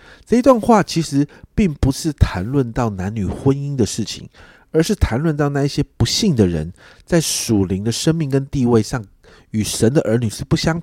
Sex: male